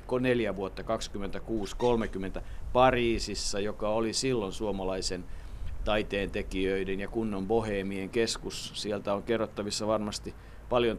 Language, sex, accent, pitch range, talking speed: Finnish, male, native, 105-120 Hz, 105 wpm